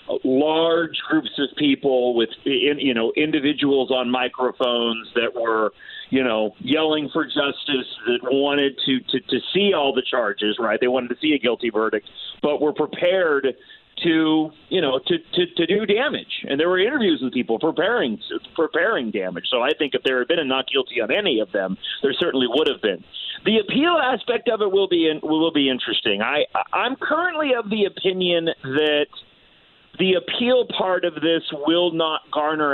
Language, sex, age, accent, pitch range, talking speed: English, male, 40-59, American, 135-195 Hz, 180 wpm